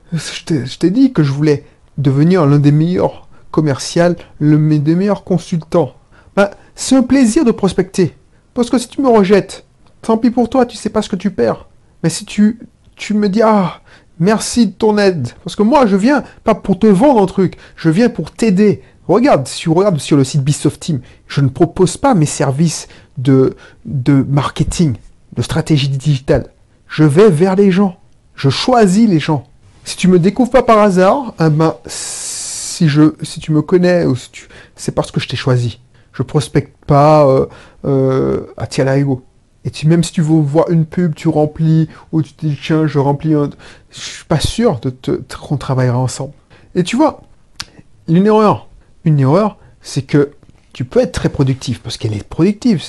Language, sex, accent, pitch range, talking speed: French, male, French, 140-200 Hz, 200 wpm